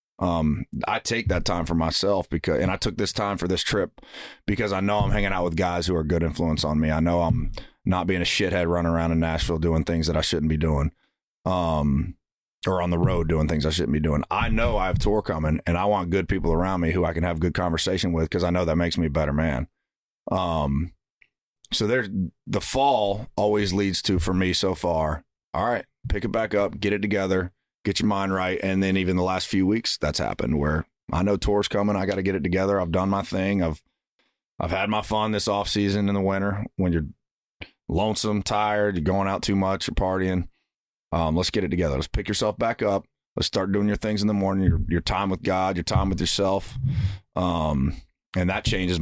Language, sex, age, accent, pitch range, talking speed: English, male, 30-49, American, 85-100 Hz, 235 wpm